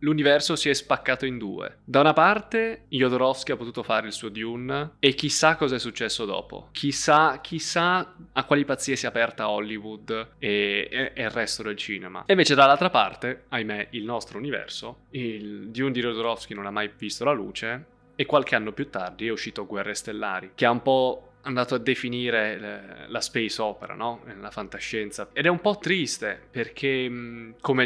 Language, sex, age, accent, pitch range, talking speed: Italian, male, 20-39, native, 110-140 Hz, 185 wpm